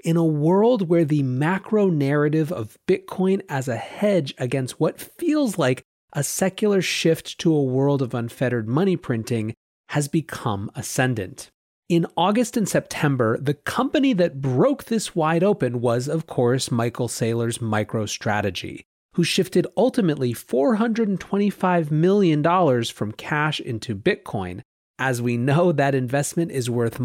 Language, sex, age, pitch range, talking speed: English, male, 30-49, 125-180 Hz, 140 wpm